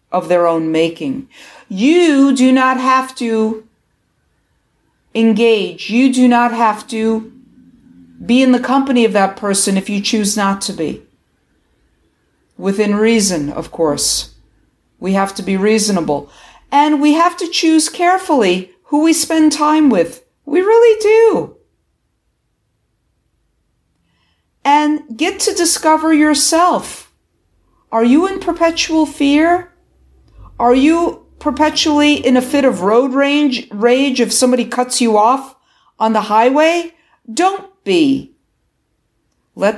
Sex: female